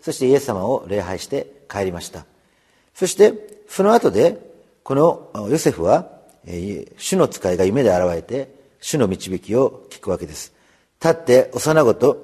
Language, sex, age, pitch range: Japanese, male, 40-59, 125-180 Hz